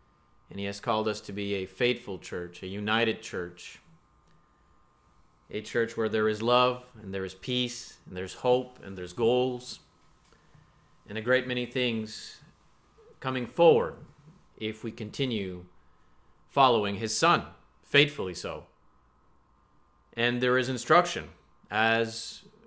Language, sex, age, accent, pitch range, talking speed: English, male, 30-49, American, 110-135 Hz, 130 wpm